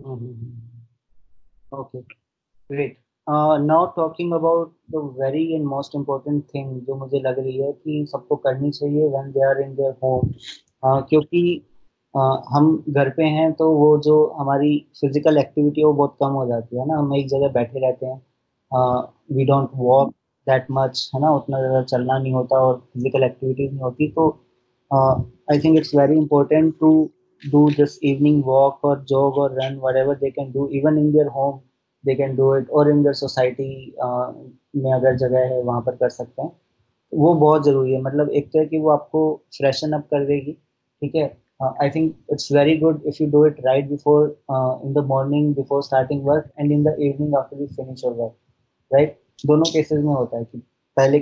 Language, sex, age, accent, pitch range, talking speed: Hindi, male, 20-39, native, 130-150 Hz, 185 wpm